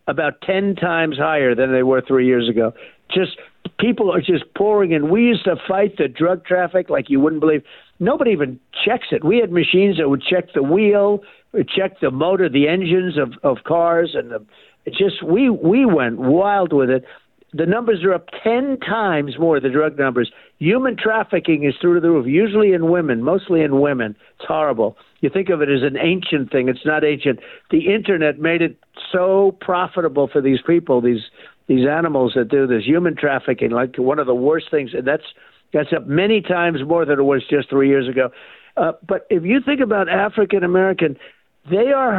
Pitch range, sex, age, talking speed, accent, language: 145-195 Hz, male, 60-79, 200 wpm, American, English